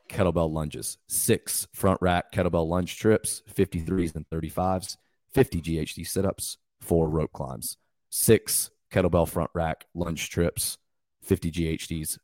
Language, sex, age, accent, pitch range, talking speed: English, male, 30-49, American, 85-100 Hz, 125 wpm